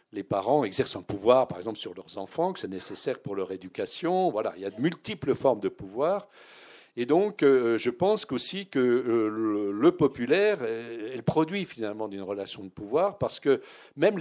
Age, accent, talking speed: 60-79, French, 190 wpm